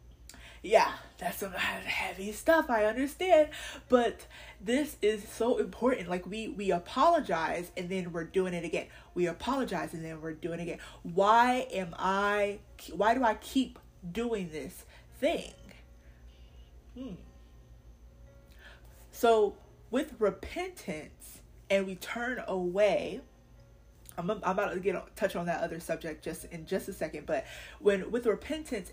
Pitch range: 170-225 Hz